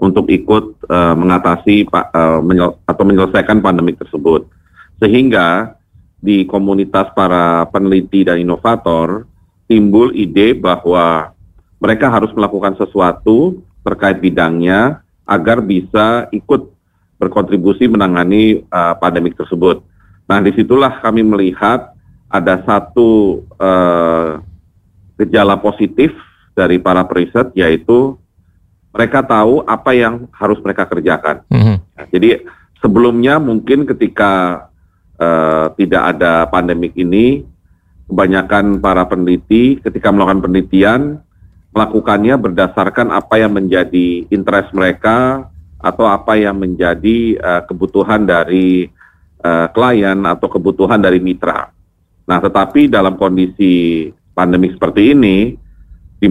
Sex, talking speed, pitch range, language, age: male, 105 wpm, 90-105 Hz, Indonesian, 40-59